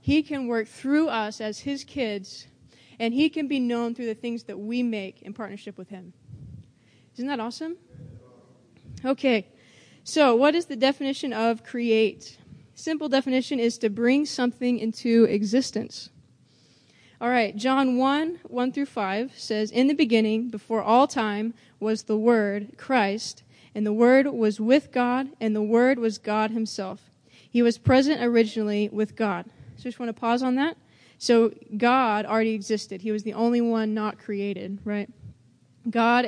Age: 20-39